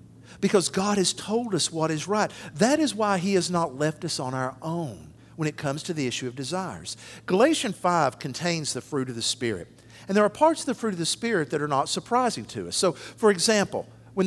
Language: English